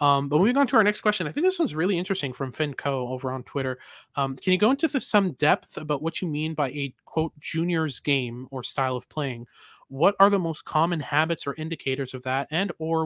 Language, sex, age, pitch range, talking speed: English, male, 20-39, 130-155 Hz, 235 wpm